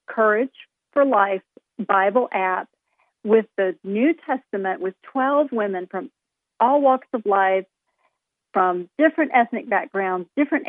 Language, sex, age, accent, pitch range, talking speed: English, female, 50-69, American, 195-255 Hz, 125 wpm